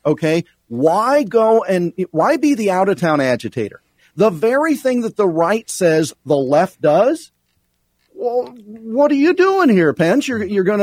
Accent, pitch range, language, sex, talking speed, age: American, 140-210 Hz, English, male, 170 wpm, 50-69